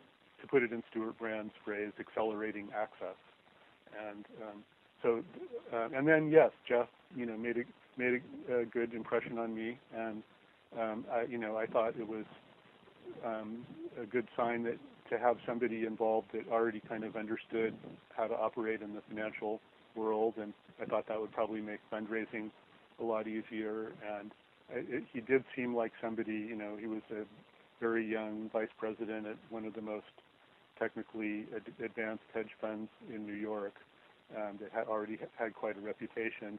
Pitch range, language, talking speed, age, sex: 110-115 Hz, English, 175 wpm, 40-59, male